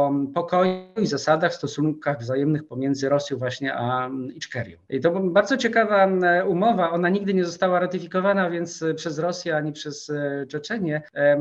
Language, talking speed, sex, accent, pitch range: Polish, 140 wpm, male, native, 145-175 Hz